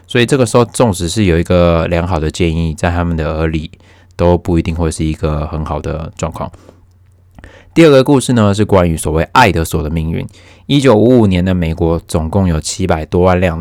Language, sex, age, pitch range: Chinese, male, 20-39, 85-95 Hz